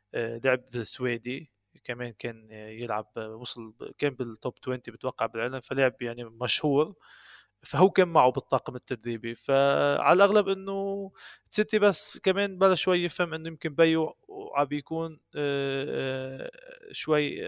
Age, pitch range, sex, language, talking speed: 20-39, 125-165 Hz, male, Arabic, 115 wpm